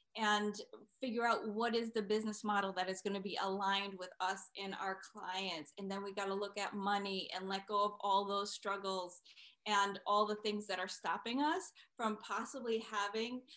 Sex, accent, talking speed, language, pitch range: female, American, 200 wpm, English, 195-235 Hz